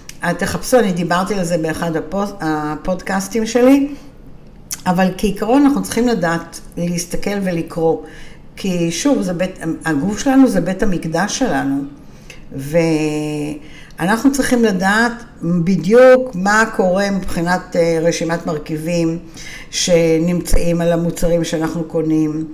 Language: Hebrew